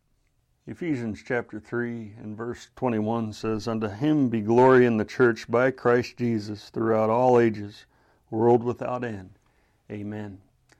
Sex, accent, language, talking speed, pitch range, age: male, American, English, 135 wpm, 110-130 Hz, 60-79